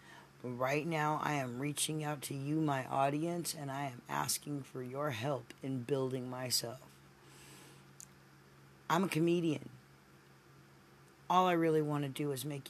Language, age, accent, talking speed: English, 40-59, American, 145 wpm